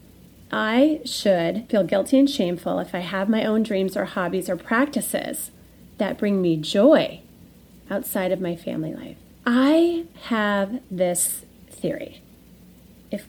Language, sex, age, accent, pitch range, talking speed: English, female, 30-49, American, 190-260 Hz, 135 wpm